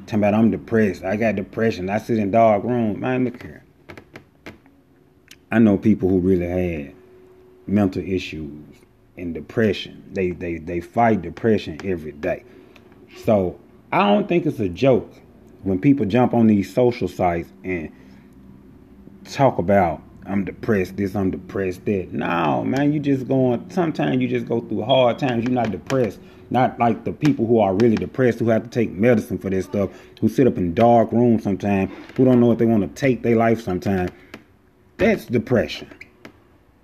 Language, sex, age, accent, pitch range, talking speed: English, male, 30-49, American, 95-125 Hz, 170 wpm